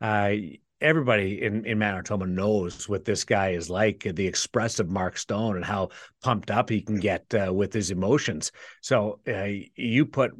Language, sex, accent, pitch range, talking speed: English, male, American, 100-120 Hz, 175 wpm